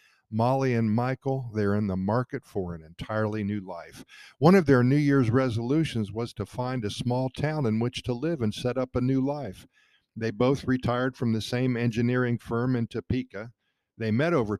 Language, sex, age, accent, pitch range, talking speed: English, male, 50-69, American, 105-130 Hz, 195 wpm